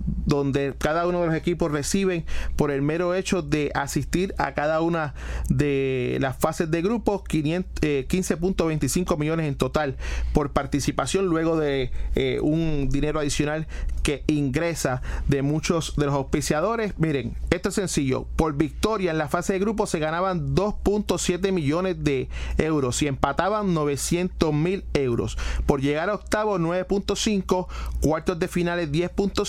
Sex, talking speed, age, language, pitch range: male, 140 wpm, 30-49, Spanish, 145-180 Hz